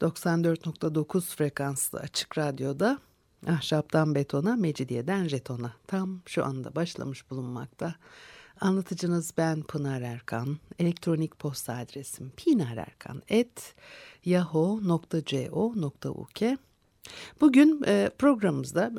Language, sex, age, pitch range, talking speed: Turkish, female, 60-79, 150-215 Hz, 75 wpm